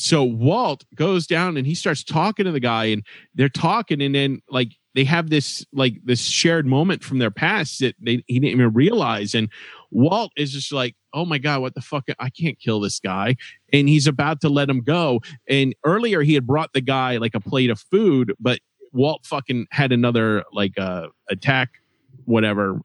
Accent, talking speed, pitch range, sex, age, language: American, 200 wpm, 120-155 Hz, male, 30-49, English